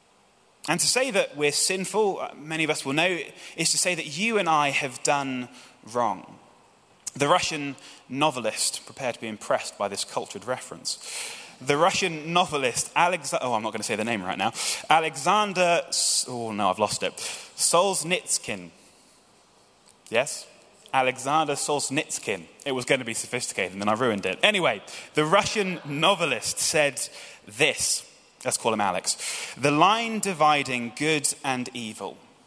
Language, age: English, 20-39